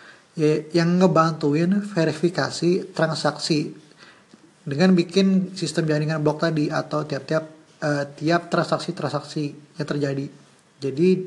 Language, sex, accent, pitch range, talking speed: English, male, Indonesian, 150-175 Hz, 100 wpm